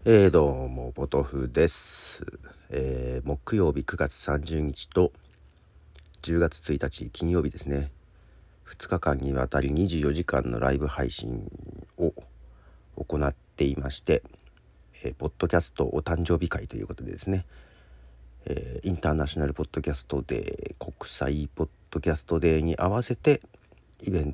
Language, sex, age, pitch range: Japanese, male, 40-59, 70-90 Hz